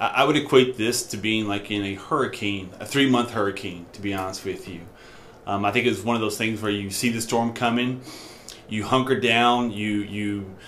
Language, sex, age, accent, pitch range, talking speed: English, male, 30-49, American, 105-125 Hz, 210 wpm